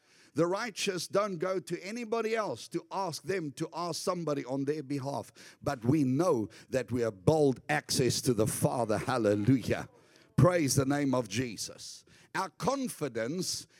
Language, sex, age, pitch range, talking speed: English, male, 50-69, 130-175 Hz, 150 wpm